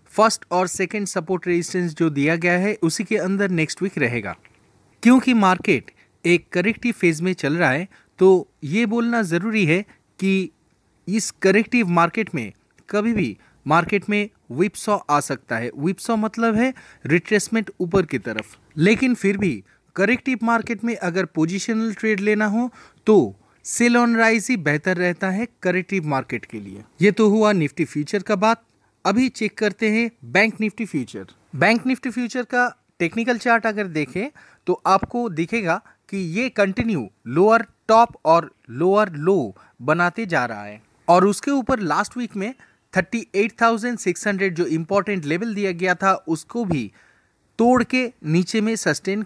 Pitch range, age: 170-225 Hz, 30-49